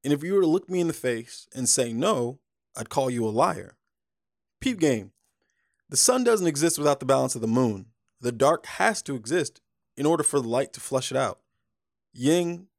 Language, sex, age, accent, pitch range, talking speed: English, male, 20-39, American, 125-165 Hz, 210 wpm